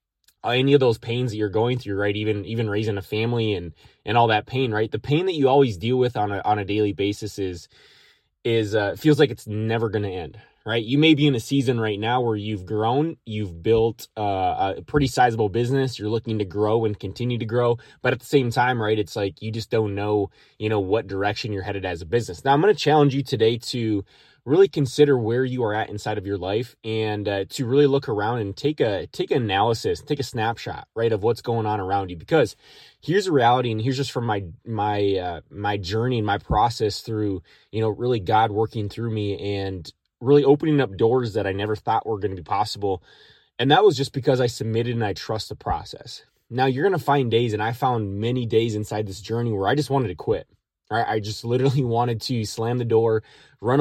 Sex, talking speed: male, 235 wpm